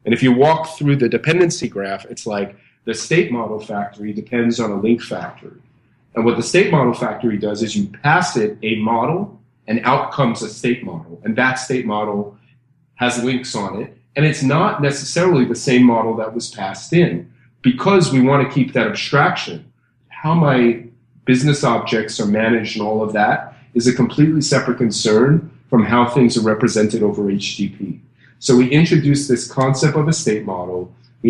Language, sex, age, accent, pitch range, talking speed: English, male, 30-49, American, 110-130 Hz, 185 wpm